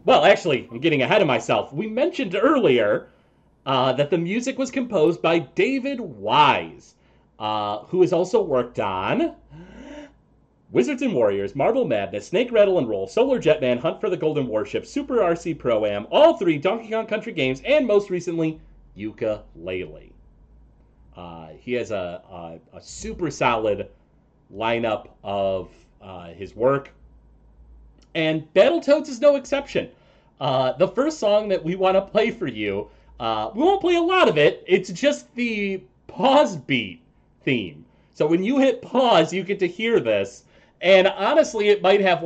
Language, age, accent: English, 30-49, American